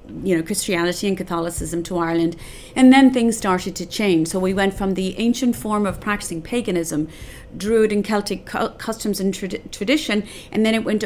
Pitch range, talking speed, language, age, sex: 180-220 Hz, 180 wpm, English, 40-59, female